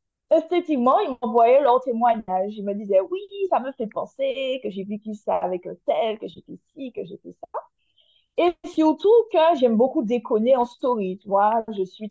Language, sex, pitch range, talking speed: French, female, 195-260 Hz, 190 wpm